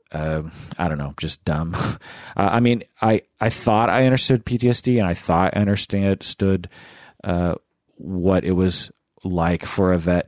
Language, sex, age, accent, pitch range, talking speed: English, male, 40-59, American, 85-110 Hz, 165 wpm